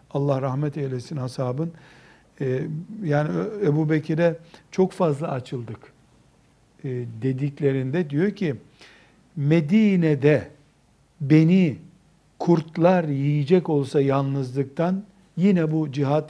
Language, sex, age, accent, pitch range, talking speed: Turkish, male, 60-79, native, 145-185 Hz, 75 wpm